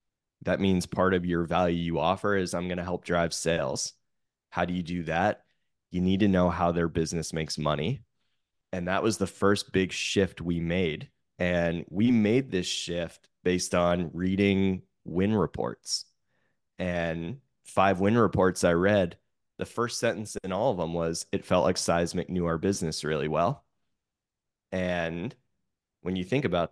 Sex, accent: male, American